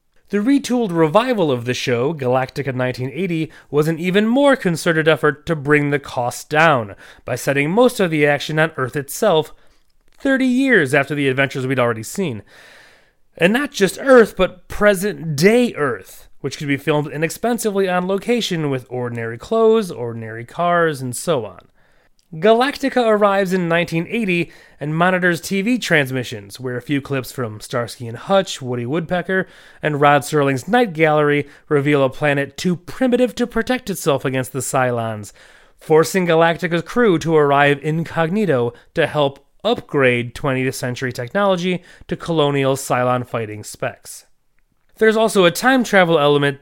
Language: English